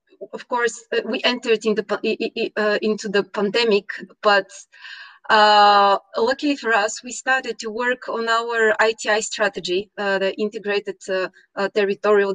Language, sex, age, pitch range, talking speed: English, female, 30-49, 205-250 Hz, 145 wpm